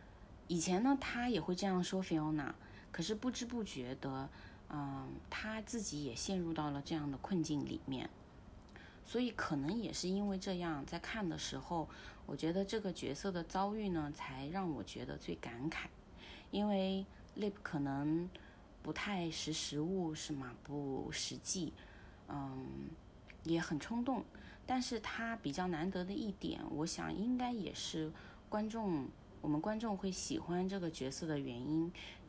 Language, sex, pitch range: Chinese, female, 140-195 Hz